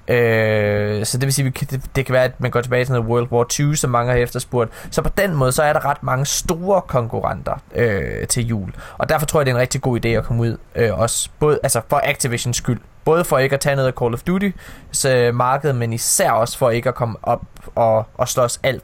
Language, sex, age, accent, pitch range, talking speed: Danish, male, 20-39, native, 115-140 Hz, 245 wpm